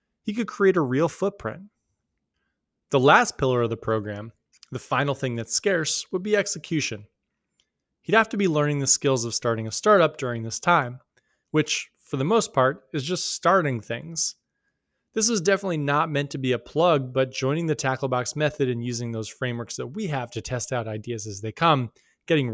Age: 20-39